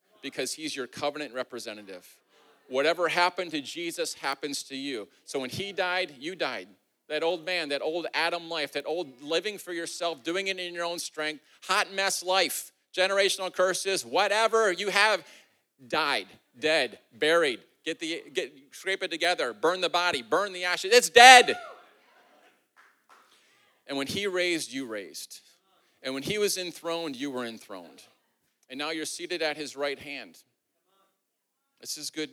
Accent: American